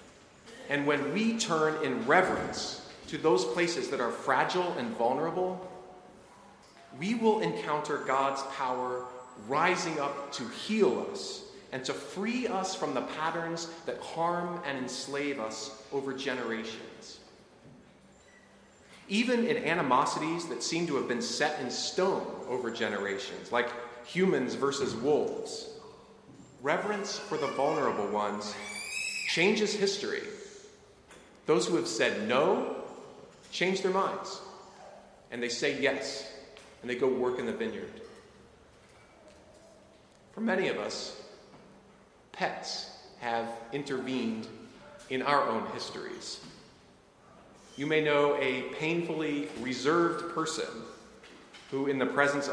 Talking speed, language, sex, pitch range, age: 120 wpm, English, male, 130-190 Hz, 40-59